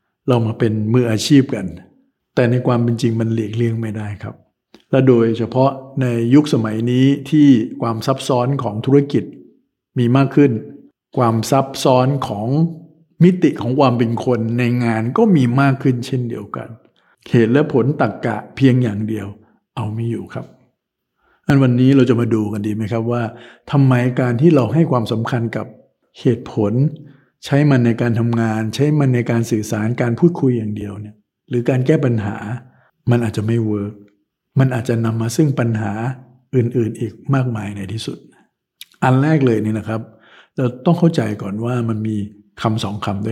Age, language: 60-79, Thai